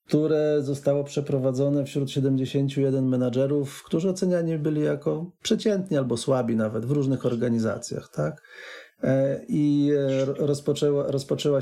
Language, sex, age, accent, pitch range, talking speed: Polish, male, 40-59, native, 125-145 Hz, 110 wpm